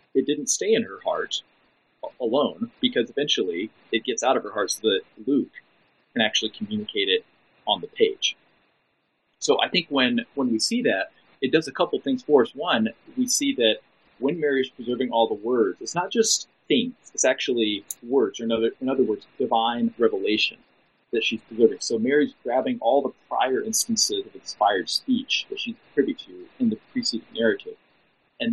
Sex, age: male, 30-49